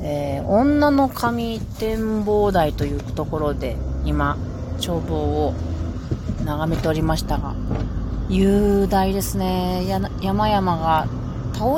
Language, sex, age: Japanese, female, 30-49